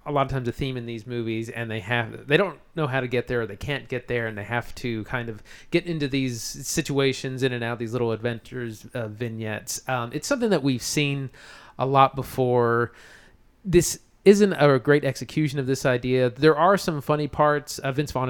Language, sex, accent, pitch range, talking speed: English, male, American, 115-145 Hz, 220 wpm